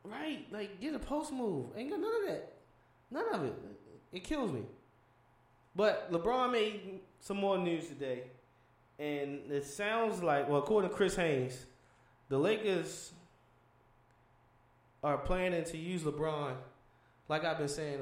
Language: English